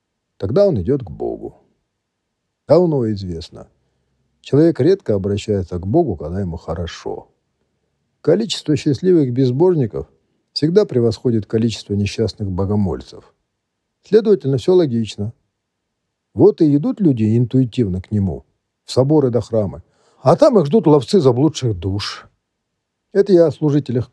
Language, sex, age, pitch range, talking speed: Russian, male, 50-69, 100-145 Hz, 120 wpm